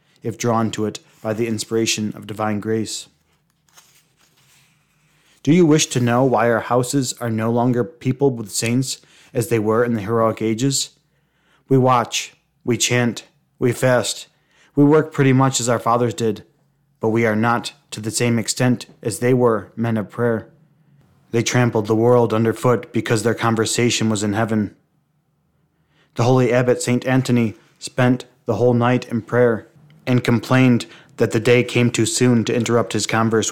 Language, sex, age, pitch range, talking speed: English, male, 20-39, 115-135 Hz, 165 wpm